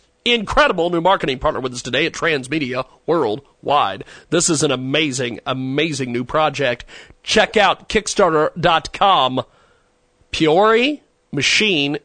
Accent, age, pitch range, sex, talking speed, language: American, 40-59, 150-185 Hz, male, 110 wpm, English